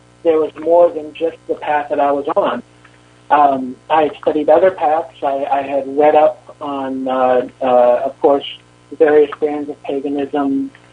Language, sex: English, male